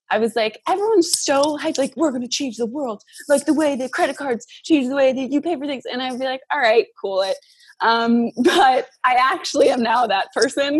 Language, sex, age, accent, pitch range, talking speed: English, female, 20-39, American, 195-275 Hz, 240 wpm